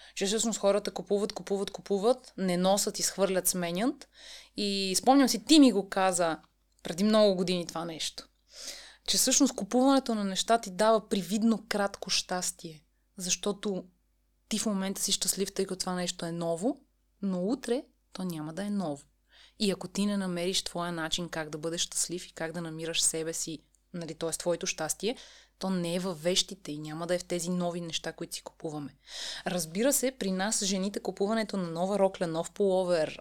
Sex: female